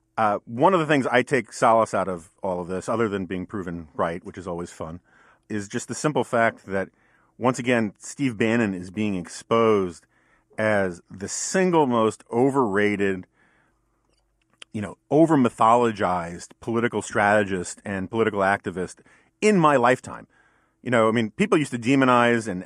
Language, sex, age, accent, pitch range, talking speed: English, male, 40-59, American, 105-145 Hz, 160 wpm